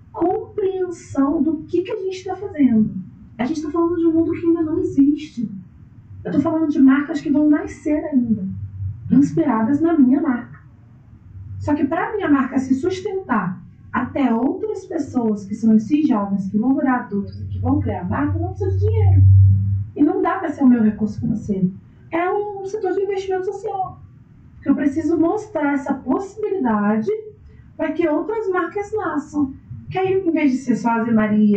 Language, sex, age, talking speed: Portuguese, female, 30-49, 185 wpm